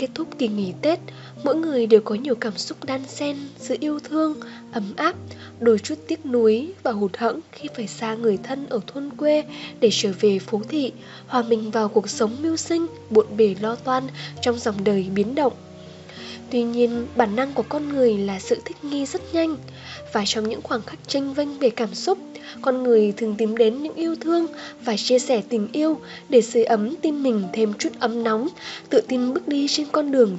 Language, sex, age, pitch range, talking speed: Vietnamese, female, 10-29, 220-280 Hz, 210 wpm